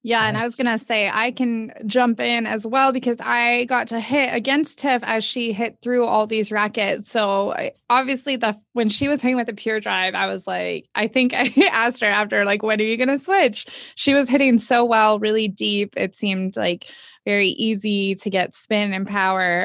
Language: English